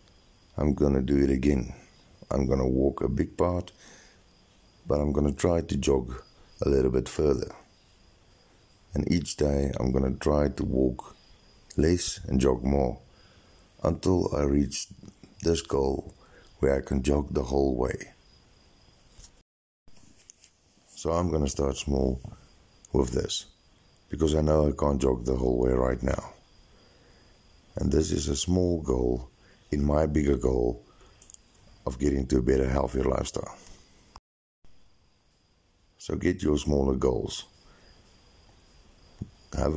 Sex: male